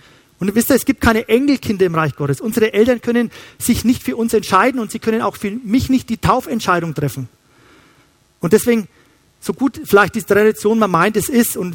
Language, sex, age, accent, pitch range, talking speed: German, male, 40-59, German, 165-235 Hz, 210 wpm